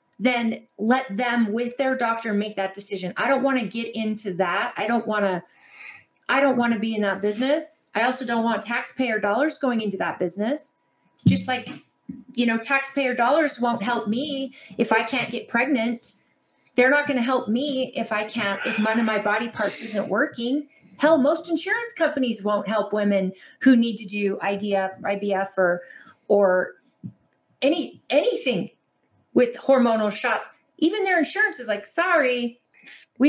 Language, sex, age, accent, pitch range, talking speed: English, female, 30-49, American, 210-275 Hz, 175 wpm